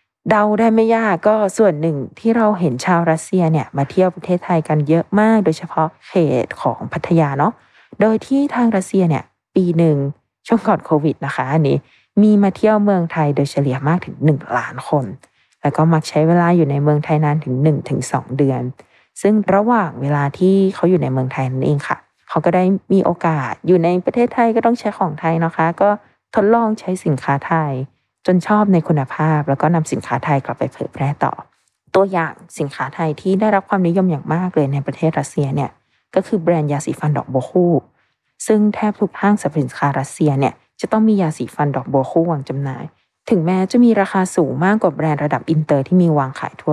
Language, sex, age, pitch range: Thai, female, 20-39, 145-195 Hz